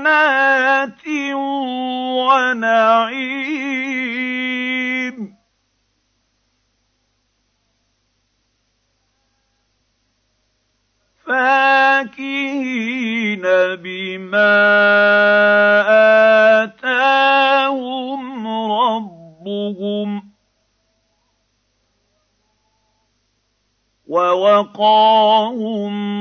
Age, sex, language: 50-69, male, Arabic